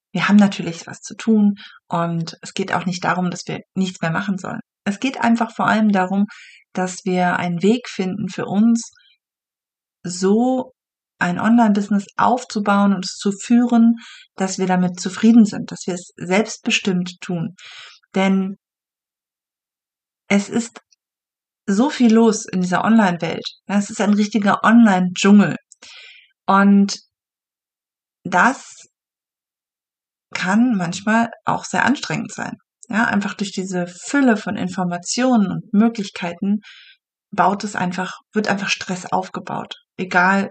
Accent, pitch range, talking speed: German, 185-230 Hz, 130 wpm